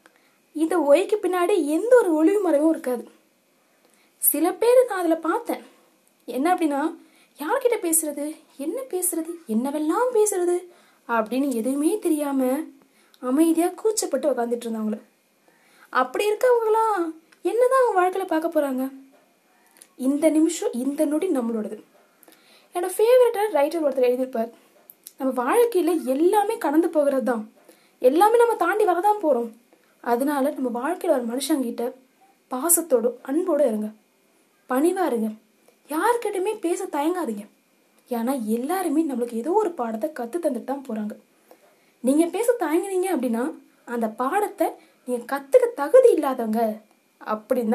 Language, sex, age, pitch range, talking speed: Tamil, female, 20-39, 250-360 Hz, 80 wpm